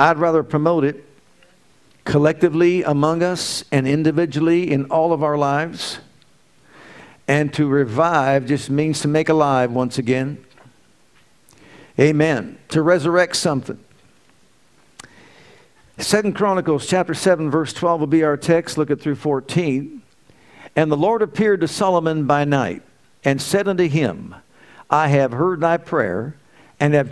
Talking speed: 135 wpm